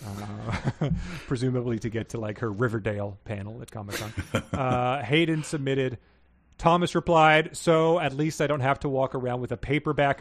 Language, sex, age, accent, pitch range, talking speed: English, male, 30-49, American, 120-155 Hz, 165 wpm